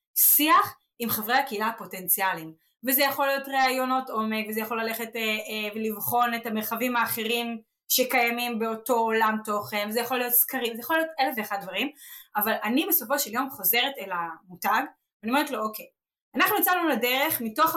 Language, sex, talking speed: Hebrew, female, 170 wpm